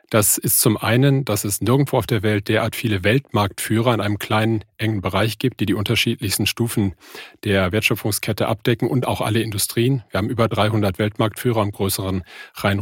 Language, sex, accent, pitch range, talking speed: German, male, German, 105-120 Hz, 180 wpm